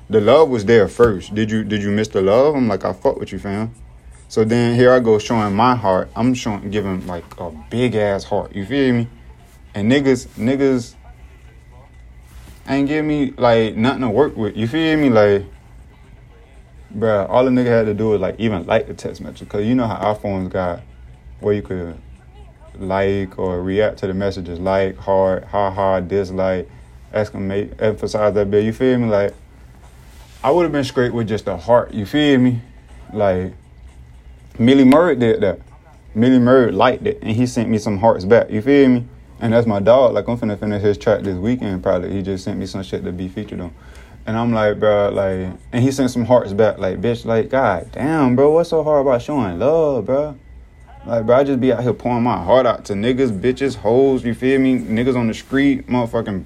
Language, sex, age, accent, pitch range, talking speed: English, male, 20-39, American, 90-120 Hz, 205 wpm